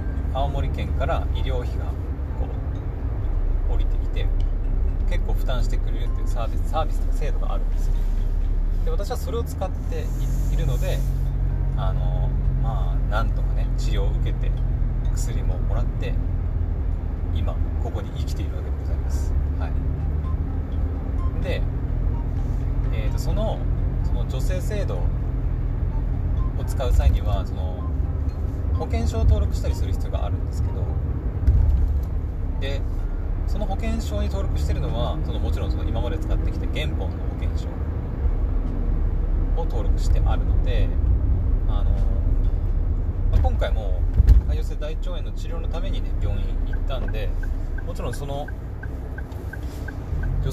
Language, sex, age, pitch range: Japanese, male, 30-49, 75-90 Hz